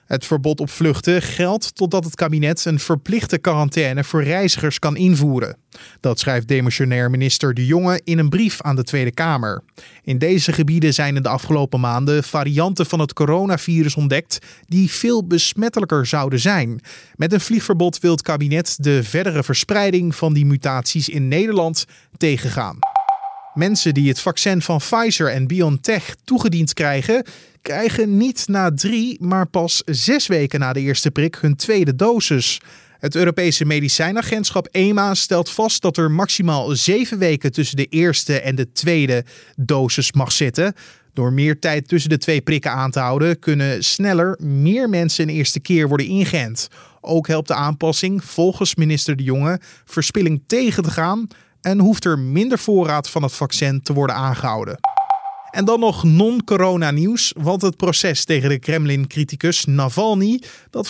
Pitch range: 145-185 Hz